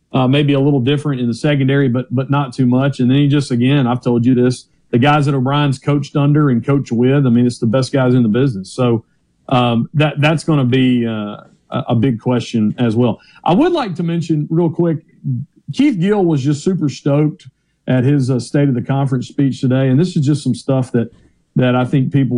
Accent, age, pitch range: American, 40-59, 120-145 Hz